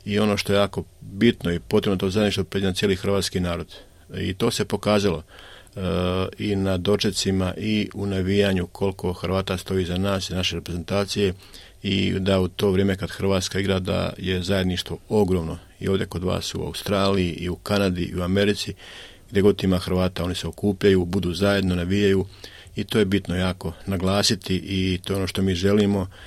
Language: Croatian